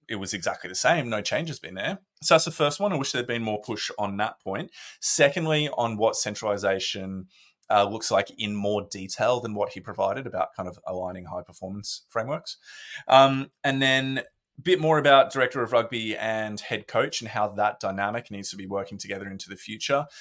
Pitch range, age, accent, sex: 95-120 Hz, 20-39, Australian, male